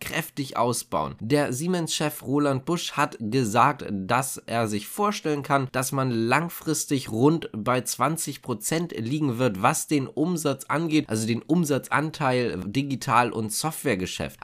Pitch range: 110-150 Hz